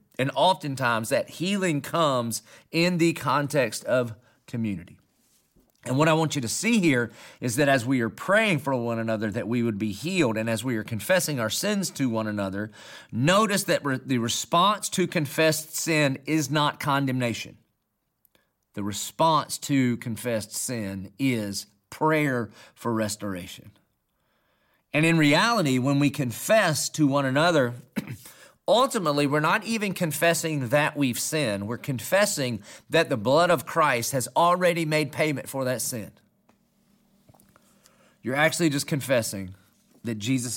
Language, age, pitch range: English, 40-59, 115-155 Hz